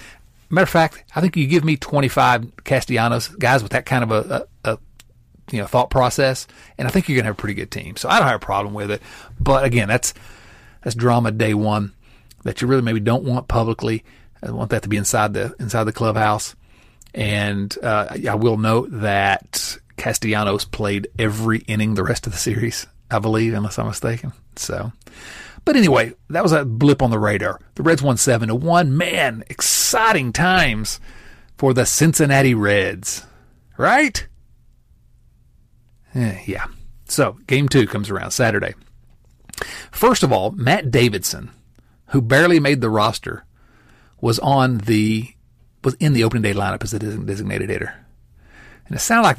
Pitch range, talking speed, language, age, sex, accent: 105-130 Hz, 175 wpm, English, 40-59, male, American